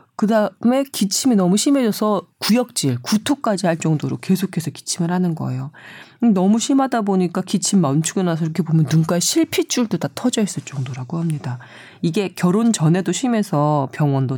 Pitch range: 150-215 Hz